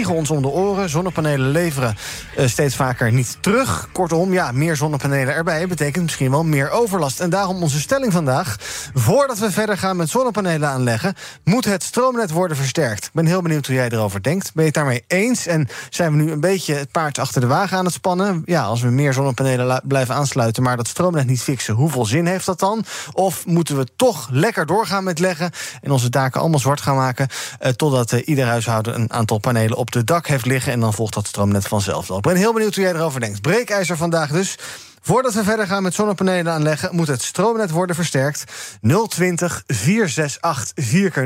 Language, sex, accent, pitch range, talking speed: Dutch, male, Dutch, 125-185 Hz, 205 wpm